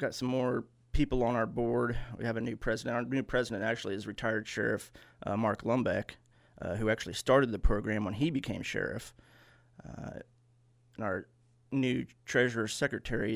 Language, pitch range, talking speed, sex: English, 110-120 Hz, 170 wpm, male